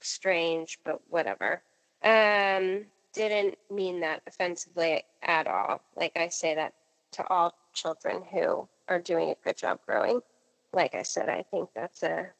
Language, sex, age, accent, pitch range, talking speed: English, female, 30-49, American, 190-240 Hz, 150 wpm